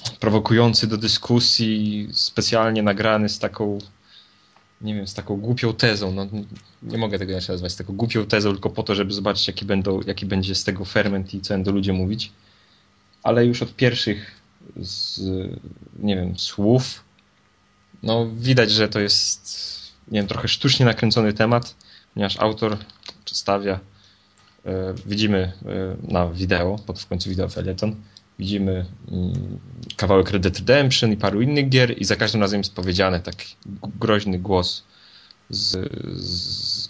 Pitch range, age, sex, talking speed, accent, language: 95-110 Hz, 20-39, male, 145 wpm, native, Polish